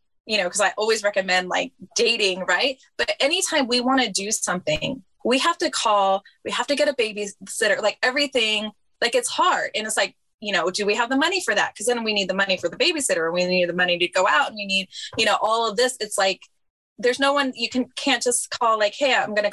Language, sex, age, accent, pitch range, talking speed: English, female, 20-39, American, 185-250 Hz, 255 wpm